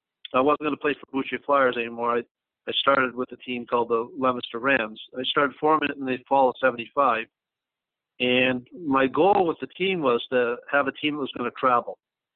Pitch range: 120-140 Hz